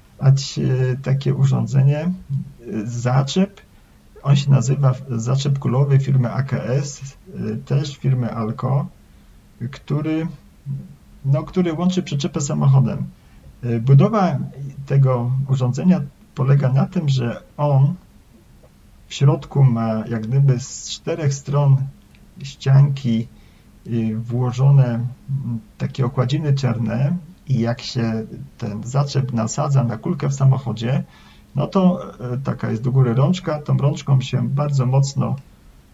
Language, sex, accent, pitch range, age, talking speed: Polish, male, native, 120-140 Hz, 40-59, 105 wpm